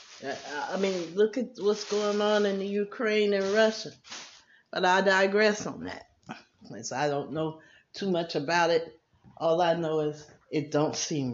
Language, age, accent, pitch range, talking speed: English, 50-69, American, 145-185 Hz, 165 wpm